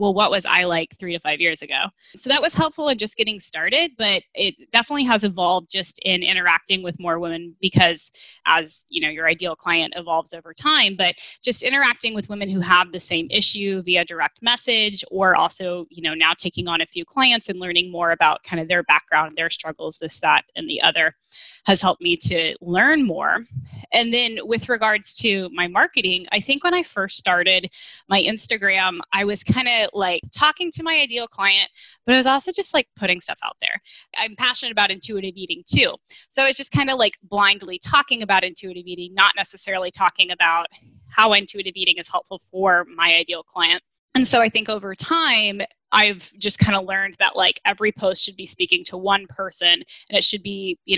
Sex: female